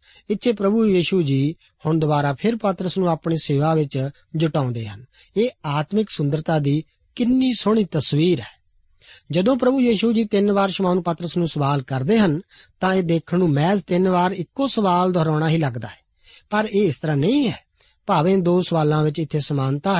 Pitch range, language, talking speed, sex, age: 150-200 Hz, Punjabi, 175 wpm, male, 40-59